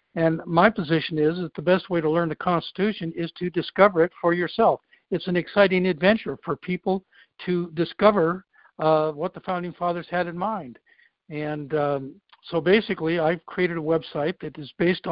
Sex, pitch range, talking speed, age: male, 160-185 Hz, 180 wpm, 60-79